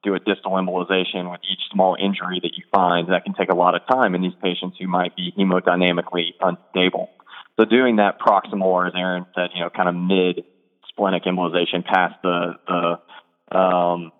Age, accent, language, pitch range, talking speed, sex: 20-39, American, English, 90-100 Hz, 190 wpm, male